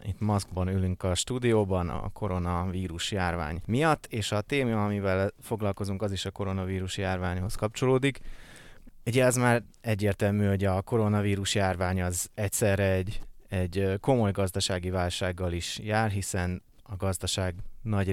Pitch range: 90-105 Hz